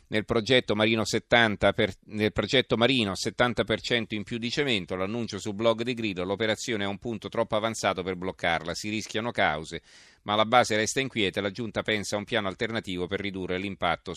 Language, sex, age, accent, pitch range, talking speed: Italian, male, 40-59, native, 95-115 Hz, 185 wpm